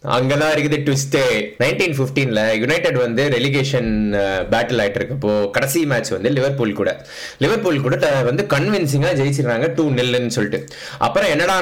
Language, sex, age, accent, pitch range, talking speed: Tamil, male, 20-39, native, 110-145 Hz, 75 wpm